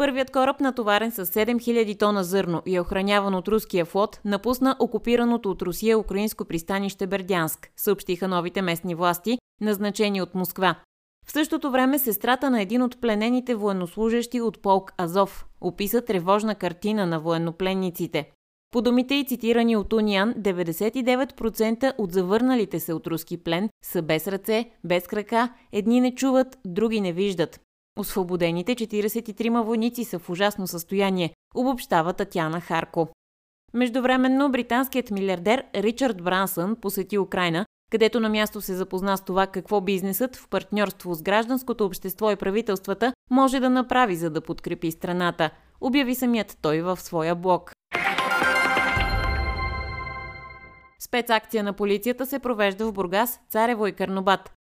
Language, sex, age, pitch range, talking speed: Bulgarian, female, 20-39, 180-235 Hz, 135 wpm